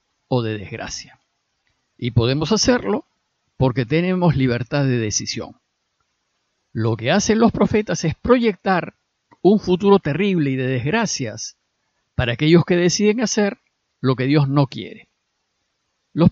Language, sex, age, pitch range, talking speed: Spanish, male, 50-69, 130-195 Hz, 130 wpm